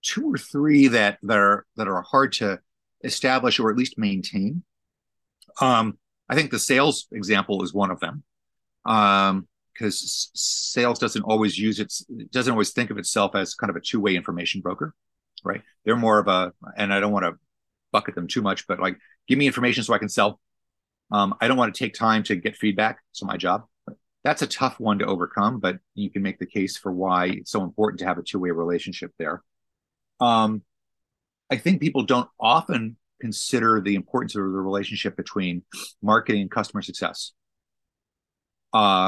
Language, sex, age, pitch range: English, male, 30-49, 95-125 Hz